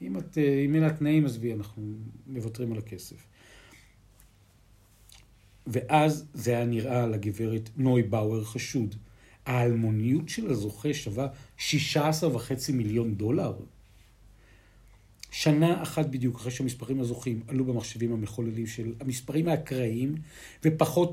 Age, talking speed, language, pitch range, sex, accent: 50-69, 100 wpm, Hebrew, 110-155 Hz, male, native